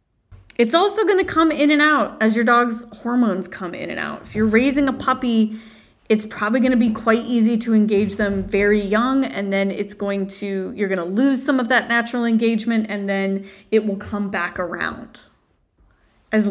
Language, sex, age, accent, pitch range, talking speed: English, female, 20-39, American, 195-265 Hz, 190 wpm